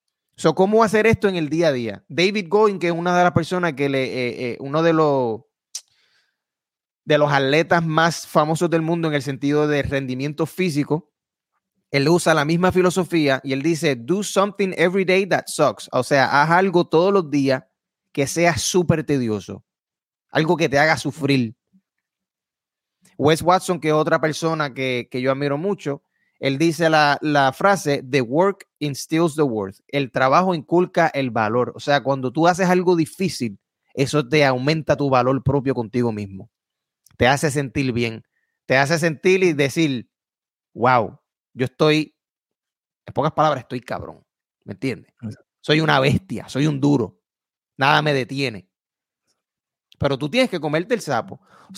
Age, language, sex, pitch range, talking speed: 30-49, Spanish, male, 135-180 Hz, 165 wpm